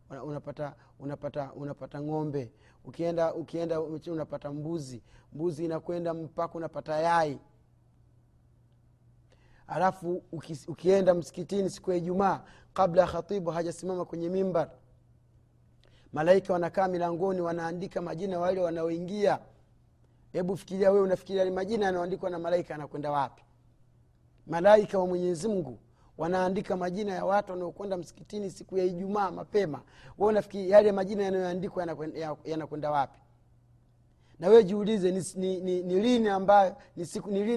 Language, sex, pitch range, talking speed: Swahili, male, 140-190 Hz, 105 wpm